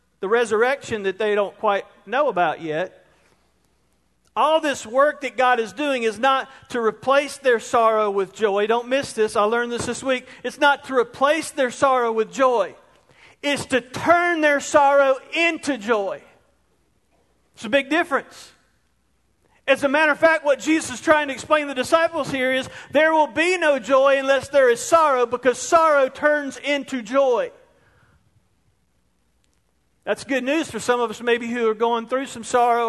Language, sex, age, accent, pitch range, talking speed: English, male, 40-59, American, 220-285 Hz, 170 wpm